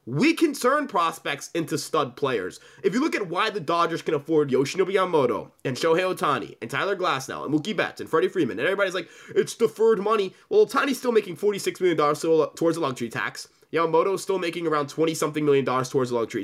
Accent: American